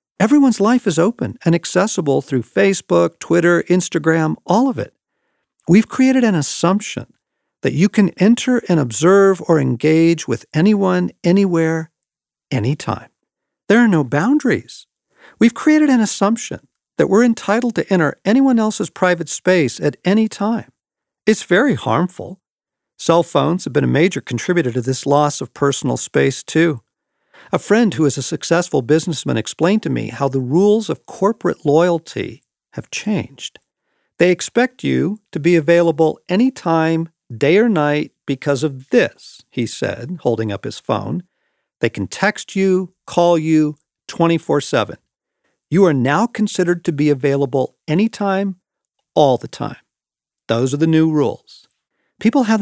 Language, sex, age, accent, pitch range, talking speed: English, male, 50-69, American, 150-200 Hz, 145 wpm